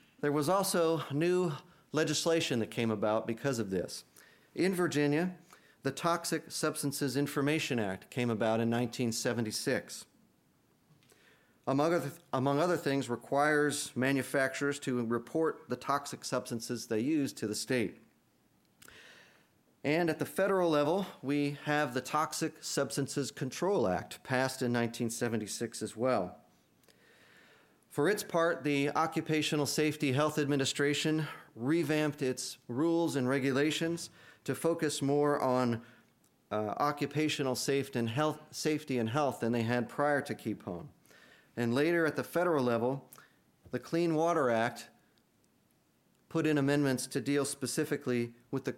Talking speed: 125 wpm